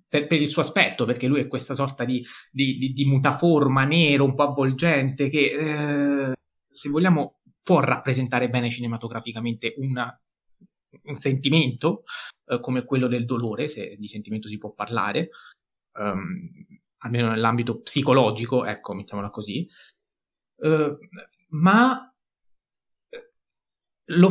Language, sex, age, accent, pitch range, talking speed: Italian, male, 30-49, native, 125-165 Hz, 120 wpm